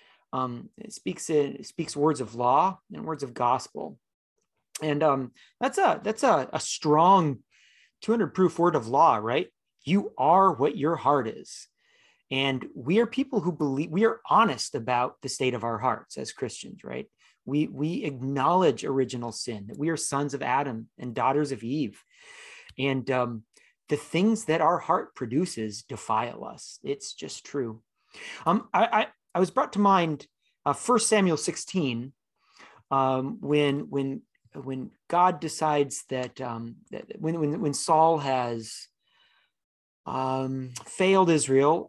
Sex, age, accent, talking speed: male, 30-49, American, 155 wpm